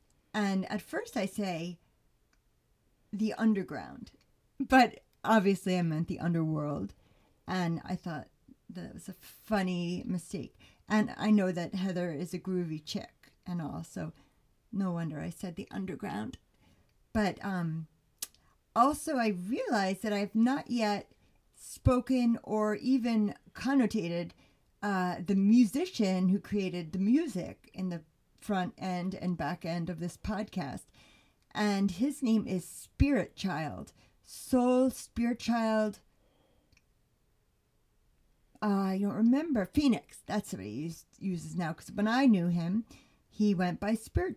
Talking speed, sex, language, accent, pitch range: 130 wpm, female, English, American, 175-215 Hz